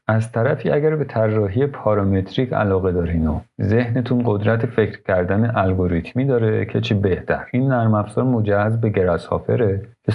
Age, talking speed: 50-69, 150 wpm